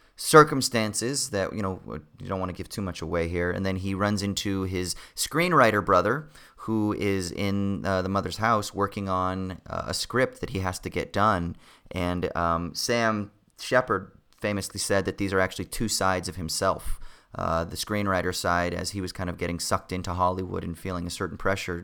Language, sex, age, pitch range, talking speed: English, male, 30-49, 85-100 Hz, 195 wpm